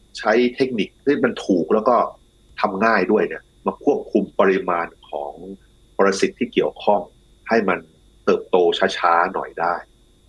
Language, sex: Thai, male